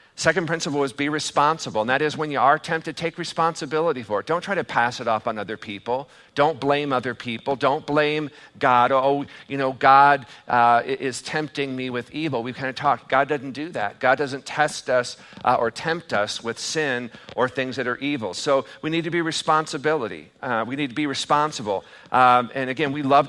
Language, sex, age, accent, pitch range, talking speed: English, male, 50-69, American, 130-155 Hz, 210 wpm